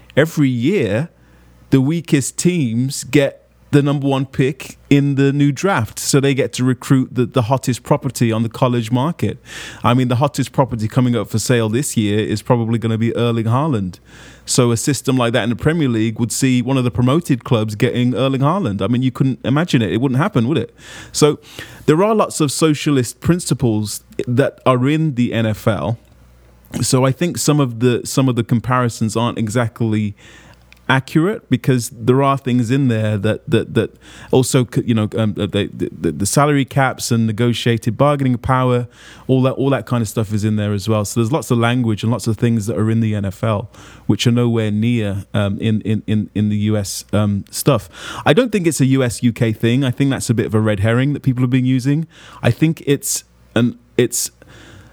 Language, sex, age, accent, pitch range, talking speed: English, male, 30-49, British, 110-135 Hz, 205 wpm